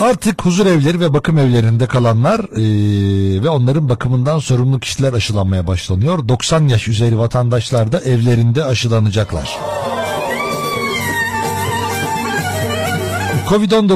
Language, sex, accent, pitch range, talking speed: Turkish, male, native, 115-145 Hz, 100 wpm